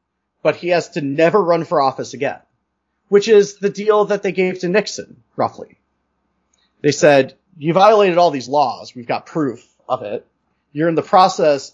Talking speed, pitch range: 180 wpm, 130-185 Hz